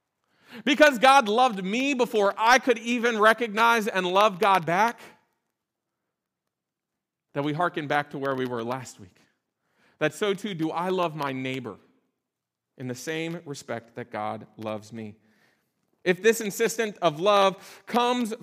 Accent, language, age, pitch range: American, English, 40-59, 155-230 Hz